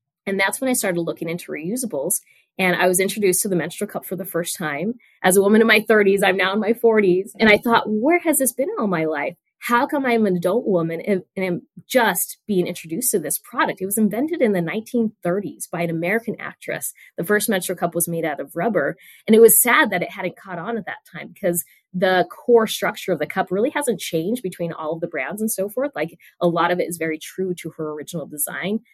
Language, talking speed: English, 245 wpm